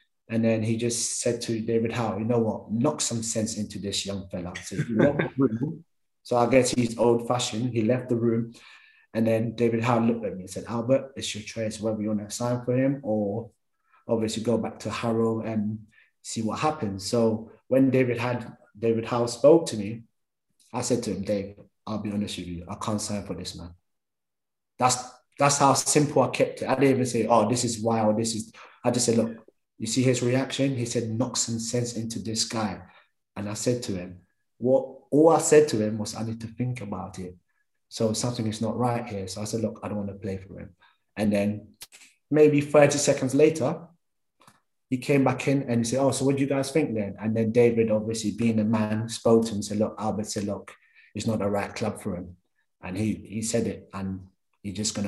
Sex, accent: male, British